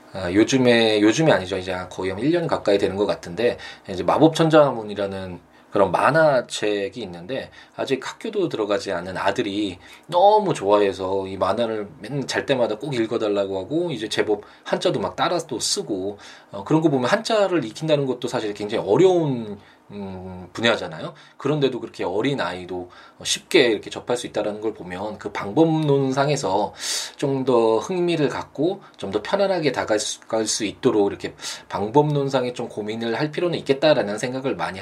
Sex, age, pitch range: male, 20-39, 100-150 Hz